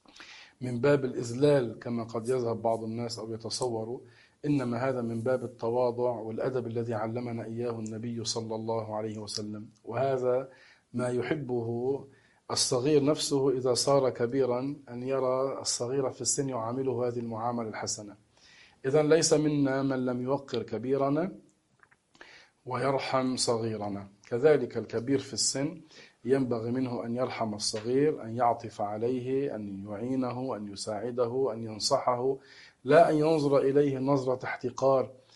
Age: 40-59